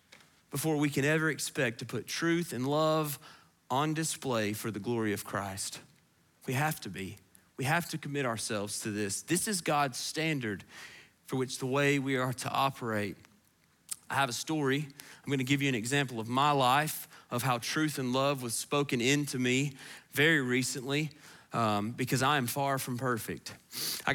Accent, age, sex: American, 30-49, male